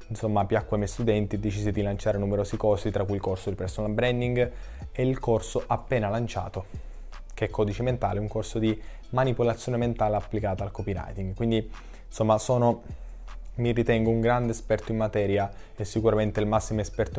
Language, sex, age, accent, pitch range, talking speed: Italian, male, 20-39, native, 100-115 Hz, 170 wpm